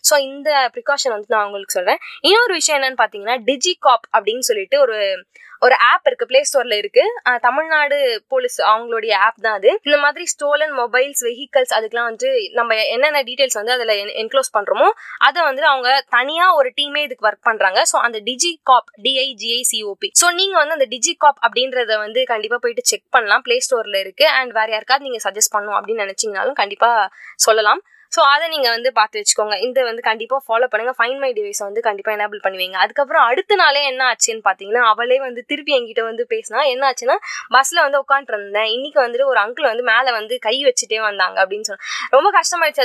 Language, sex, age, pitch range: Tamil, female, 20-39, 225-305 Hz